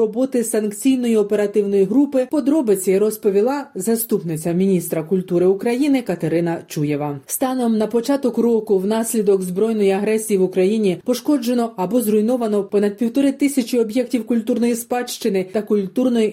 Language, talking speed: Ukrainian, 120 wpm